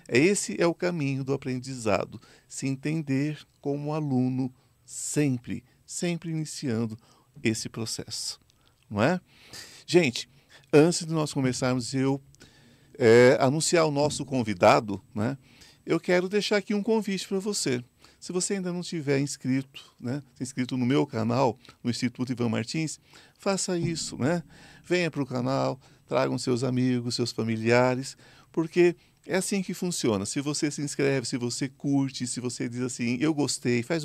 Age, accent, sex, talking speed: 50-69, Brazilian, male, 150 wpm